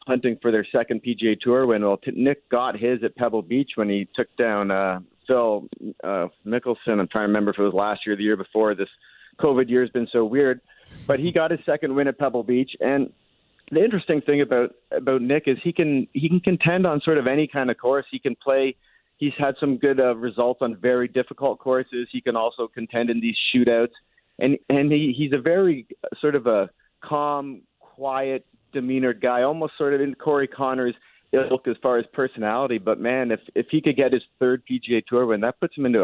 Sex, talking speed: male, 220 wpm